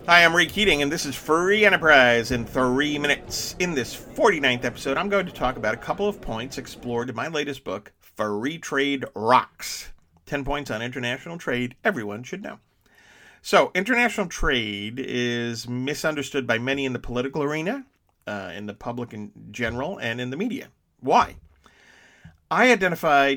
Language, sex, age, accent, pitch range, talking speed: English, male, 40-59, American, 110-150 Hz, 165 wpm